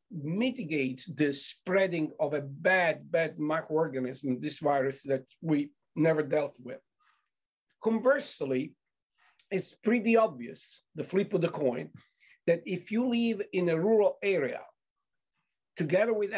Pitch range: 150-210 Hz